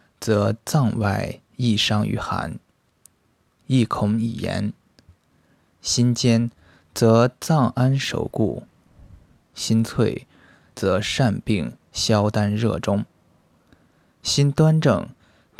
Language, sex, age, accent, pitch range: Chinese, male, 20-39, native, 95-120 Hz